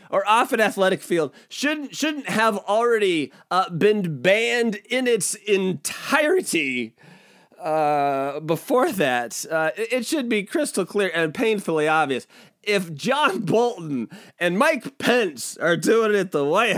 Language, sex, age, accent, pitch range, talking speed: English, male, 30-49, American, 150-225 Hz, 140 wpm